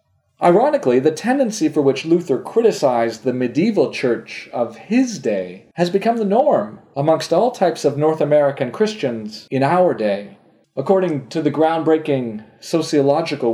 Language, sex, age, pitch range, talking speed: English, male, 40-59, 130-190 Hz, 140 wpm